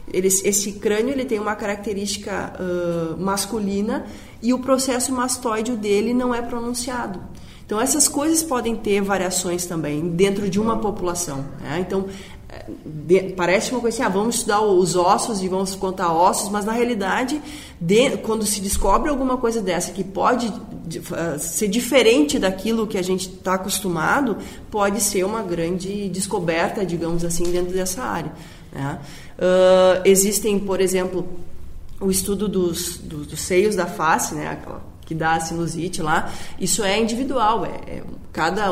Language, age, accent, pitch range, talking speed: Portuguese, 20-39, Brazilian, 180-225 Hz, 155 wpm